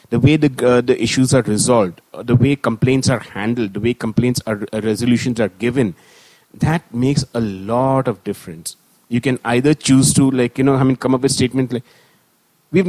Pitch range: 120-155 Hz